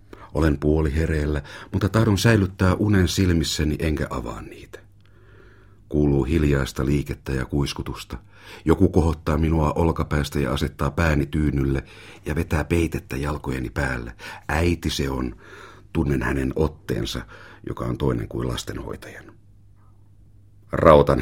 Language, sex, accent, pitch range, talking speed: Finnish, male, native, 75-100 Hz, 115 wpm